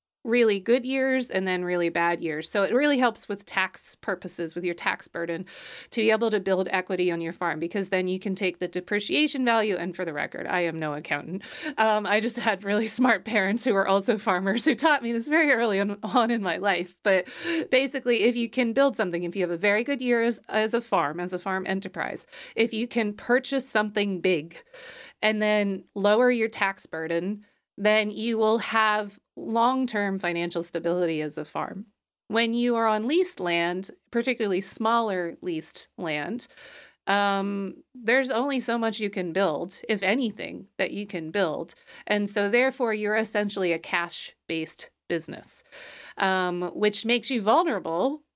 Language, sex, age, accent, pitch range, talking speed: English, female, 30-49, American, 185-235 Hz, 180 wpm